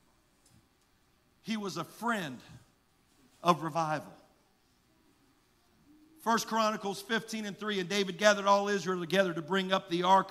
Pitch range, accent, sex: 140-190 Hz, American, male